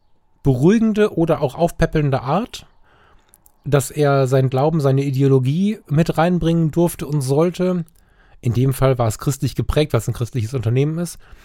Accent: German